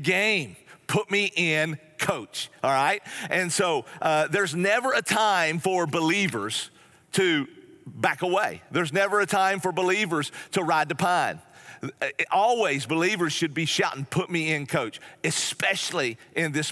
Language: English